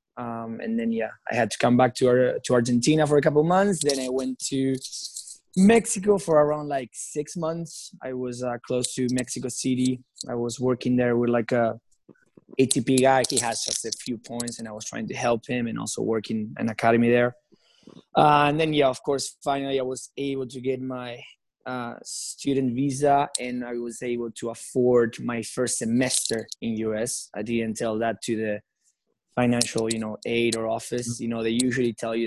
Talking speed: 205 wpm